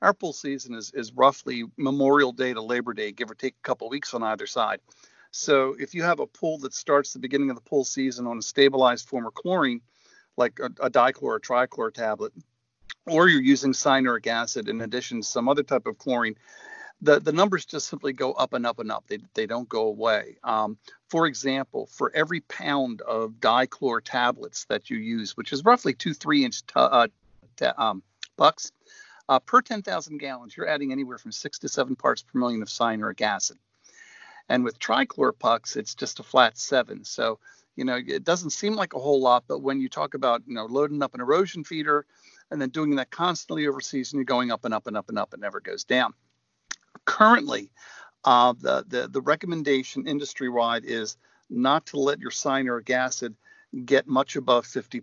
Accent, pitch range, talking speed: American, 120-155 Hz, 205 wpm